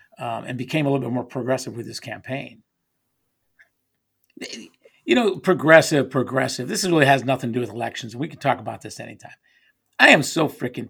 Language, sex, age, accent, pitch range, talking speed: English, male, 50-69, American, 115-175 Hz, 185 wpm